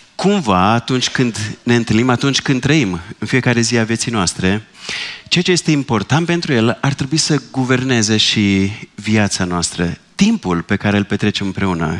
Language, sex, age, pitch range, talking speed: Romanian, male, 30-49, 100-150 Hz, 165 wpm